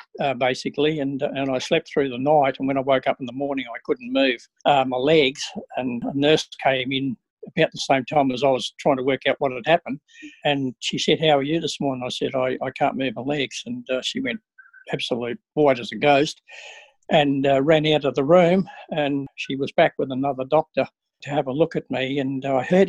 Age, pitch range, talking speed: 60-79, 135-160 Hz, 240 wpm